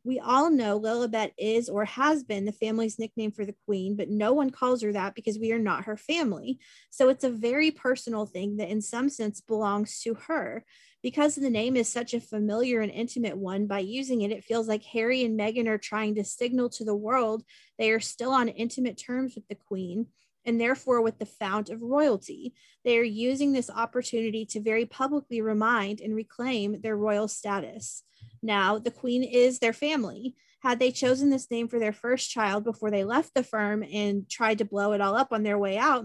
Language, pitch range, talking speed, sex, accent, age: English, 210-255 Hz, 210 wpm, female, American, 30-49